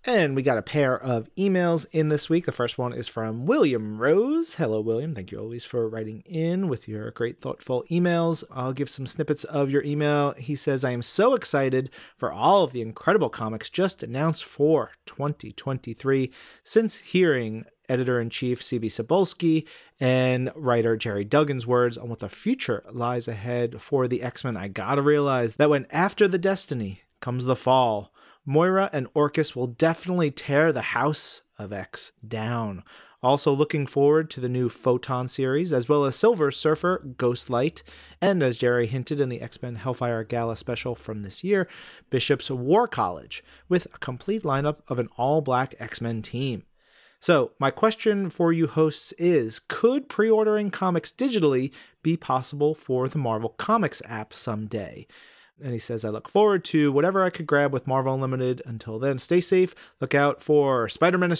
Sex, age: male, 30-49